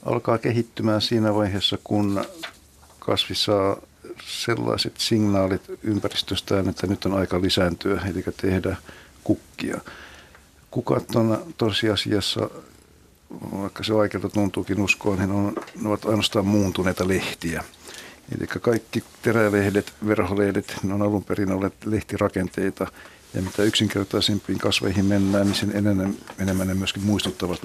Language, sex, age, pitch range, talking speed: Finnish, male, 60-79, 90-105 Hz, 115 wpm